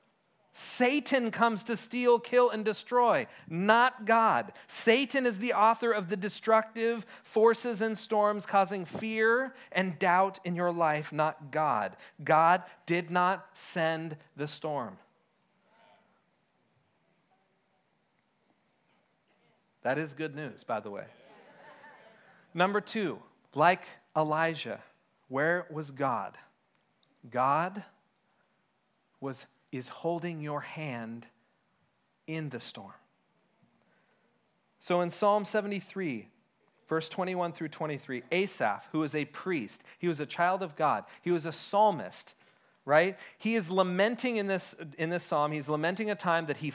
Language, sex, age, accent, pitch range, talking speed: English, male, 40-59, American, 160-215 Hz, 120 wpm